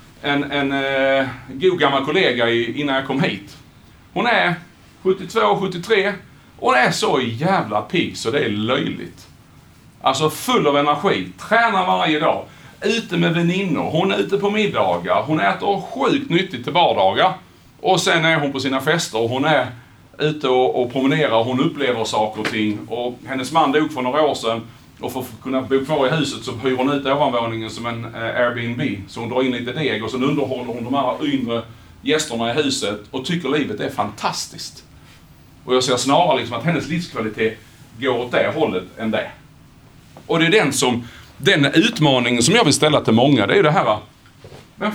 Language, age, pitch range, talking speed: English, 40-59, 115-160 Hz, 185 wpm